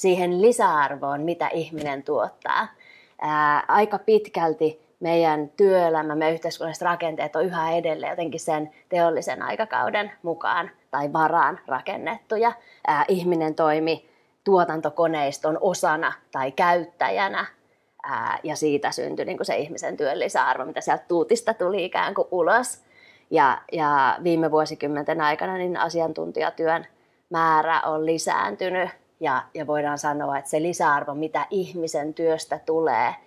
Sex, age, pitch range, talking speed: female, 20-39, 150-180 Hz, 120 wpm